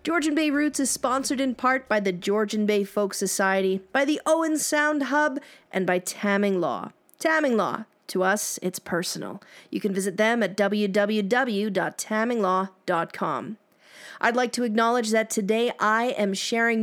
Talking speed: 155 wpm